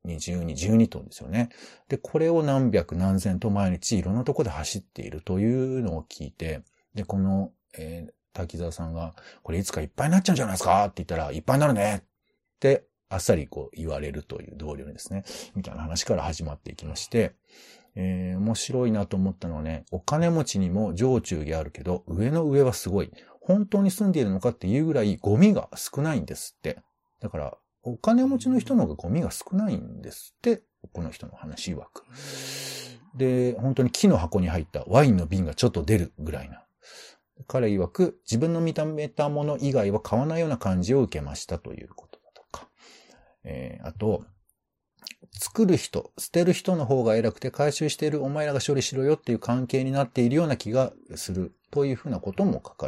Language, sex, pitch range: Japanese, male, 90-145 Hz